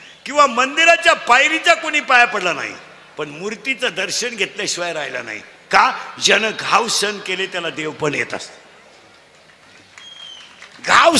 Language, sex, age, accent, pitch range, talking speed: Marathi, male, 50-69, native, 185-270 Hz, 95 wpm